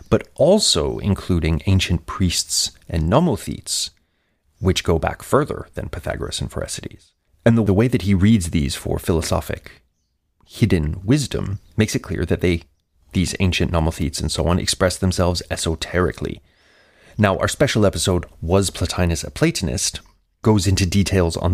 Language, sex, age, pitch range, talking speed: English, male, 30-49, 85-100 Hz, 145 wpm